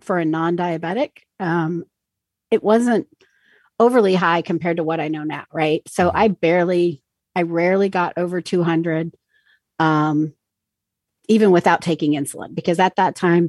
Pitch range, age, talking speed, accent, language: 160-195 Hz, 40-59, 140 wpm, American, English